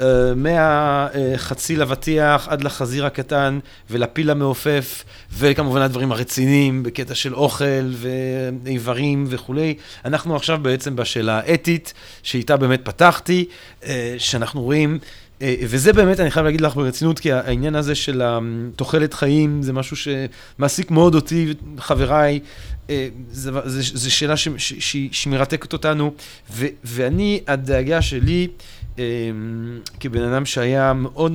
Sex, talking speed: male, 105 wpm